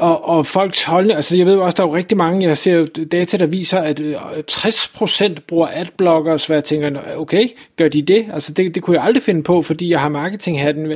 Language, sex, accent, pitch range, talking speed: Danish, male, native, 160-195 Hz, 230 wpm